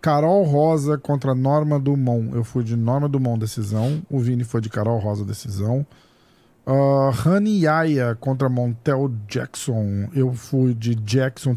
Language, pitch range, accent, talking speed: Portuguese, 120-155 Hz, Brazilian, 145 wpm